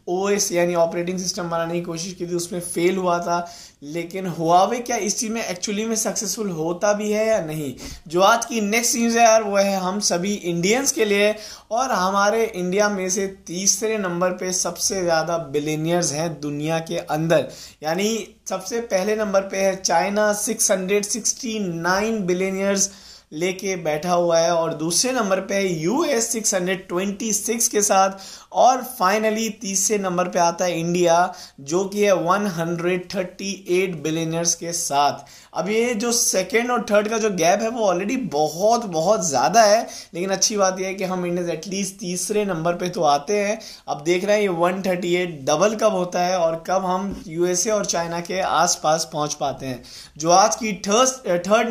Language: Hindi